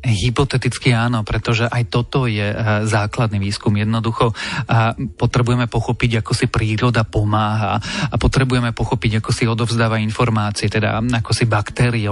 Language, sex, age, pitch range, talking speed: Slovak, male, 30-49, 110-125 Hz, 130 wpm